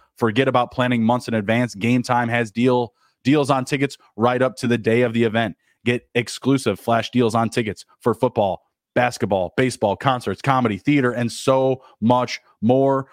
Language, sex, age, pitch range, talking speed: English, male, 20-39, 110-125 Hz, 170 wpm